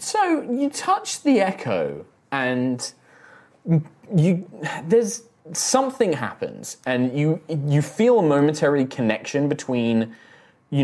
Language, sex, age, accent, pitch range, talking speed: English, male, 20-39, British, 100-135 Hz, 105 wpm